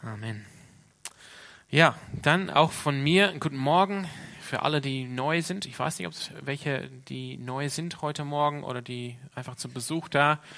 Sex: male